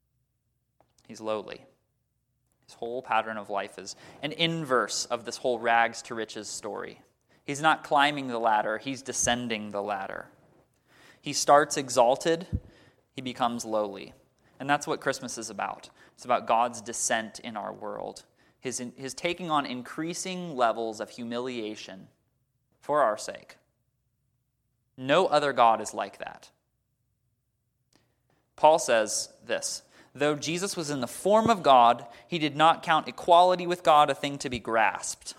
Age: 20-39